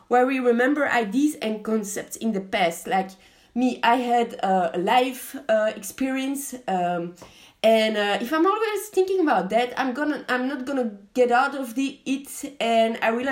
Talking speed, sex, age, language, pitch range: 175 wpm, female, 30-49, English, 215-275 Hz